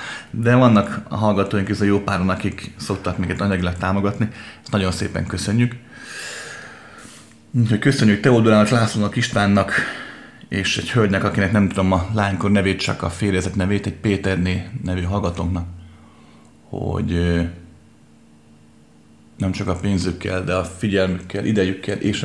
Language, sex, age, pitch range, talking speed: Hungarian, male, 30-49, 90-105 Hz, 130 wpm